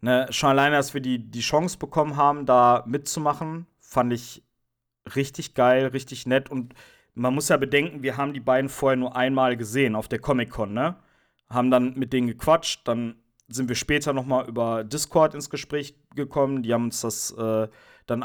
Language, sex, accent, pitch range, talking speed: German, male, German, 120-145 Hz, 180 wpm